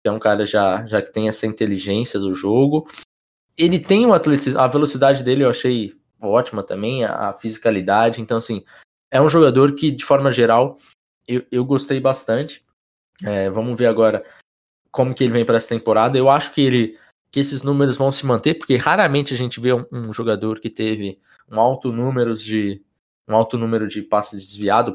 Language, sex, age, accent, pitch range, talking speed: Portuguese, male, 20-39, Brazilian, 110-135 Hz, 180 wpm